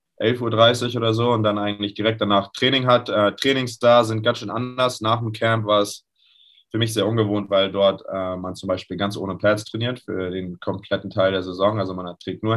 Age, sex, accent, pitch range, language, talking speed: 20-39, male, German, 95-110 Hz, German, 220 wpm